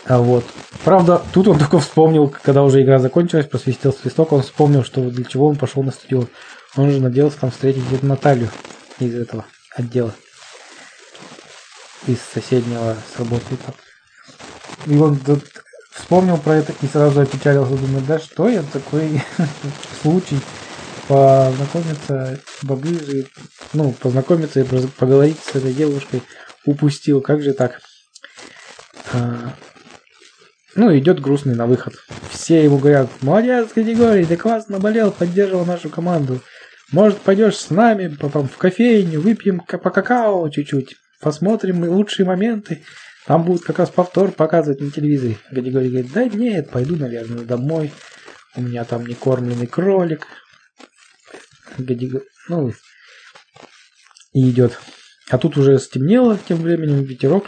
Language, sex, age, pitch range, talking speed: Russian, male, 20-39, 130-175 Hz, 130 wpm